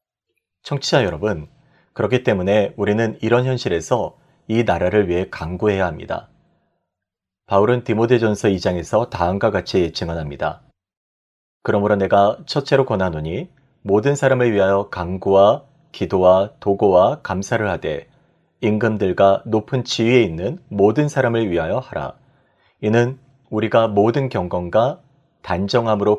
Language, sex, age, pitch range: Korean, male, 30-49, 100-135 Hz